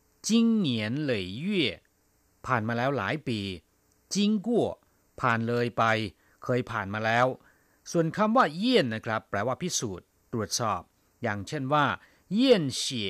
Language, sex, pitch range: Thai, male, 105-145 Hz